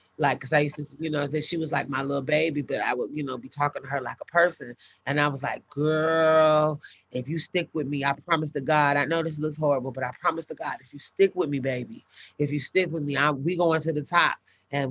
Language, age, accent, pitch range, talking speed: English, 30-49, American, 145-160 Hz, 270 wpm